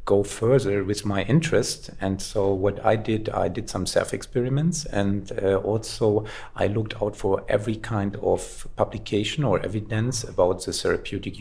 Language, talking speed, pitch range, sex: Danish, 160 wpm, 100-120 Hz, male